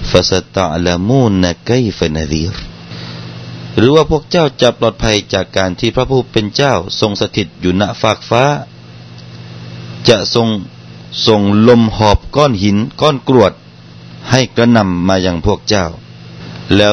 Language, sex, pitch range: Thai, male, 80-105 Hz